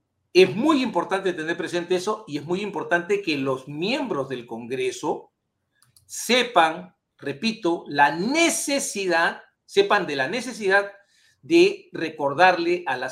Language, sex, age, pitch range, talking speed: Spanish, male, 50-69, 150-215 Hz, 125 wpm